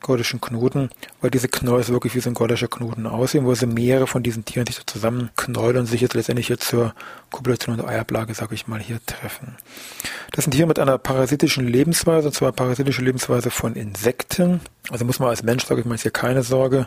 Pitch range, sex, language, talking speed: 120-135 Hz, male, German, 215 wpm